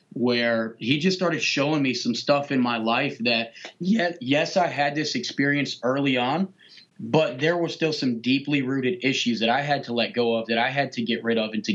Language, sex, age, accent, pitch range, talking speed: English, male, 30-49, American, 120-145 Hz, 220 wpm